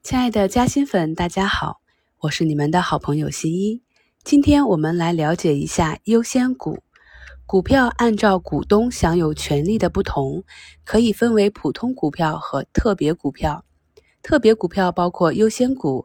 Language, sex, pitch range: Chinese, female, 160-225 Hz